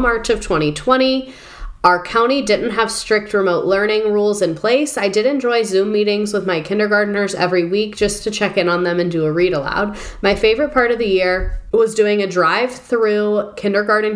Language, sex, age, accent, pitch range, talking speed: English, female, 20-39, American, 175-220 Hz, 190 wpm